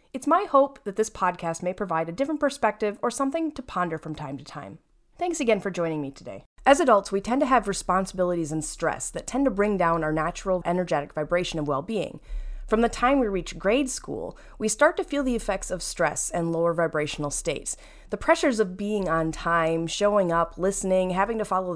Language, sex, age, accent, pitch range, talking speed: English, female, 30-49, American, 170-240 Hz, 210 wpm